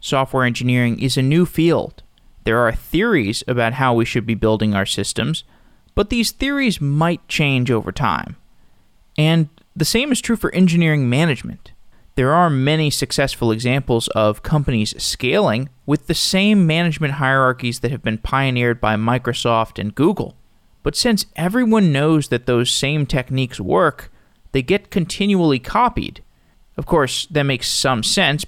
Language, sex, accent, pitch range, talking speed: English, male, American, 120-155 Hz, 150 wpm